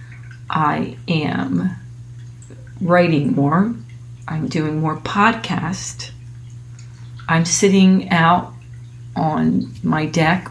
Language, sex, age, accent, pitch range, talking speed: English, female, 40-59, American, 120-180 Hz, 80 wpm